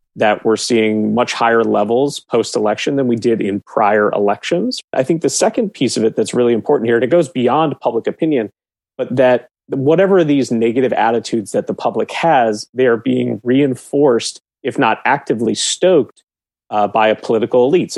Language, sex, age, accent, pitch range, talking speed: English, male, 30-49, American, 110-135 Hz, 175 wpm